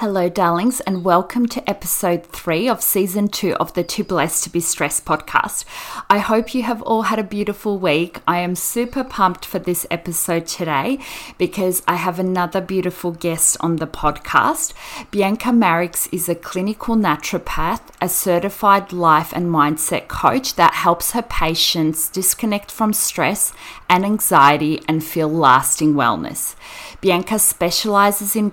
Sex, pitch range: female, 160-205 Hz